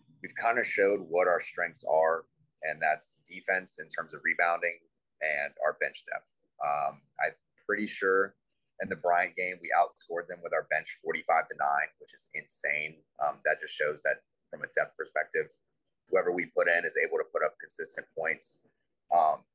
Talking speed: 185 wpm